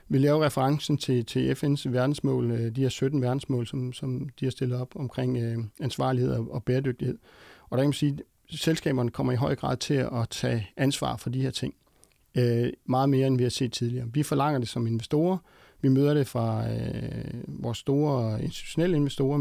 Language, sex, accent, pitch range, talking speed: Danish, male, native, 120-140 Hz, 180 wpm